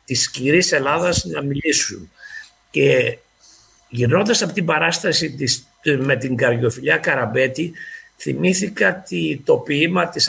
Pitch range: 130-165 Hz